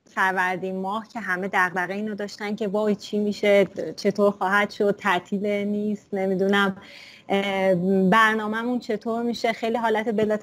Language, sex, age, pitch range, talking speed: Persian, female, 30-49, 185-230 Hz, 140 wpm